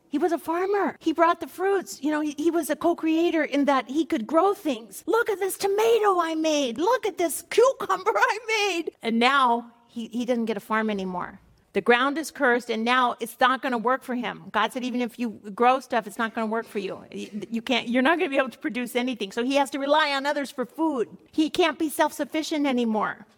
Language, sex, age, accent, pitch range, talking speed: English, female, 50-69, American, 230-320 Hz, 245 wpm